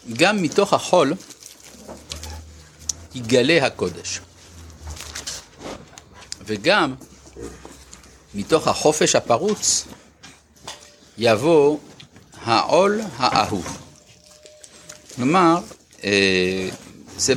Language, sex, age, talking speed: Hebrew, male, 50-69, 50 wpm